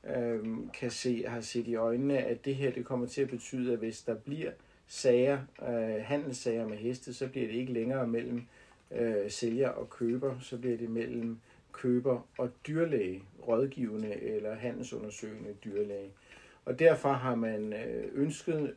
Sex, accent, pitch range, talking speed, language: male, native, 110-130 Hz, 160 wpm, Danish